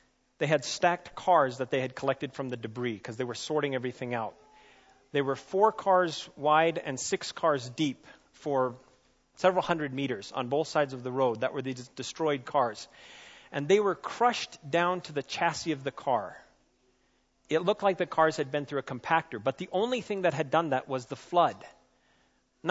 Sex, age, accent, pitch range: male, 40-59, American, 130-175 Hz